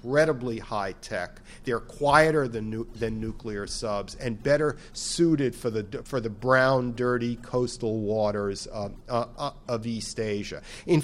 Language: English